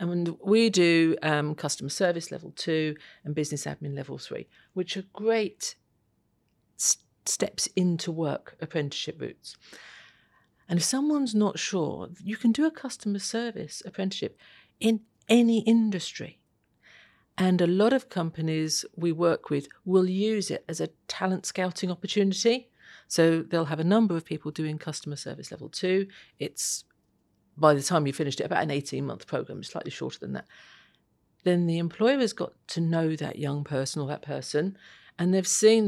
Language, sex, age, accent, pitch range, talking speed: English, female, 50-69, British, 155-200 Hz, 160 wpm